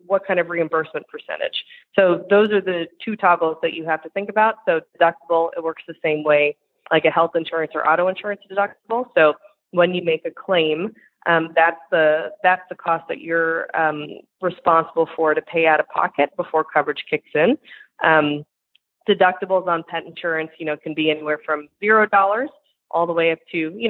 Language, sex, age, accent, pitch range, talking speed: English, female, 20-39, American, 160-195 Hz, 195 wpm